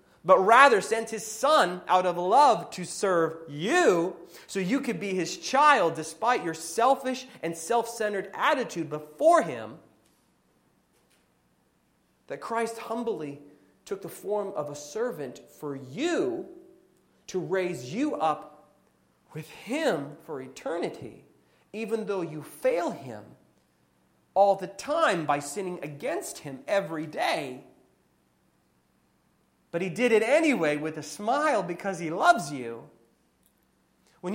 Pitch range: 155-255 Hz